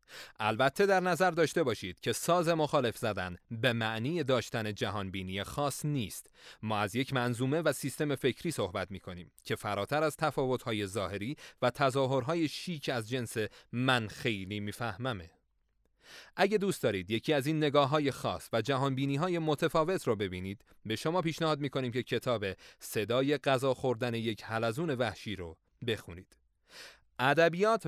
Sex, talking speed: male, 150 wpm